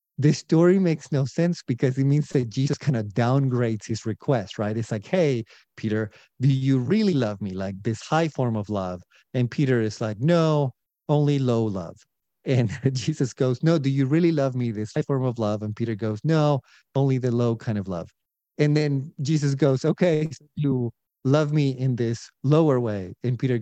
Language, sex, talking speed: English, male, 195 wpm